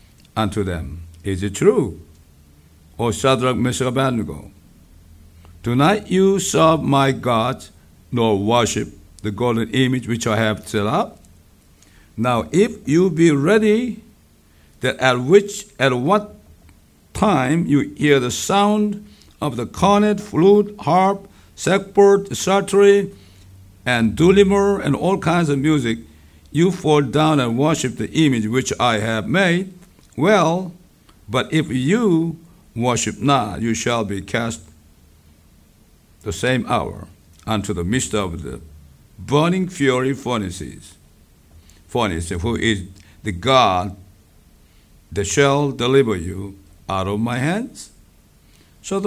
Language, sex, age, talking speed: English, male, 60-79, 120 wpm